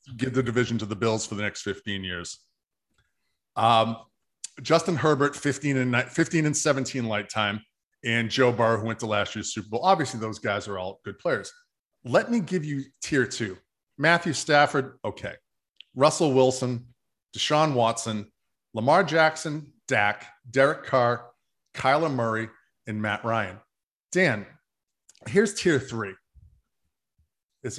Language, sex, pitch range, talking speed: English, male, 115-155 Hz, 145 wpm